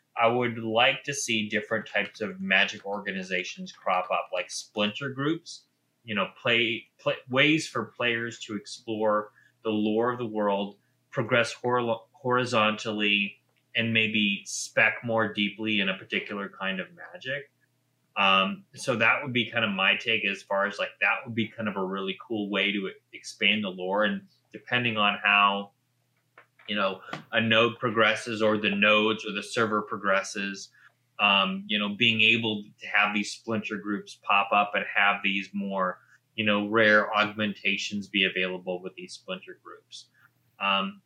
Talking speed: 165 wpm